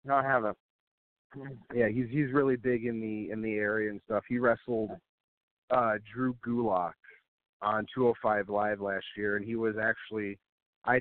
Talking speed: 165 wpm